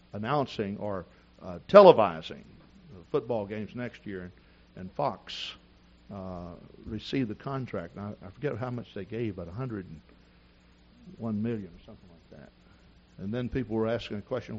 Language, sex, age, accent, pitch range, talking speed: English, male, 60-79, American, 85-135 Hz, 145 wpm